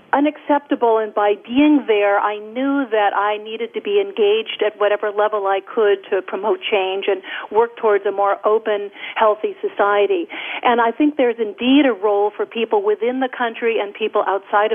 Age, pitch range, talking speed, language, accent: 50-69, 205-245 Hz, 180 wpm, English, American